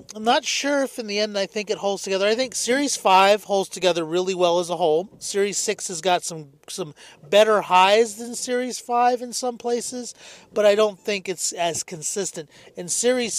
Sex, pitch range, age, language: male, 160-210 Hz, 40-59, English